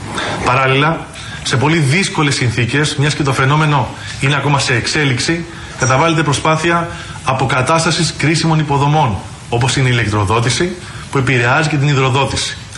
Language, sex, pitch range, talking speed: Greek, male, 130-155 Hz, 125 wpm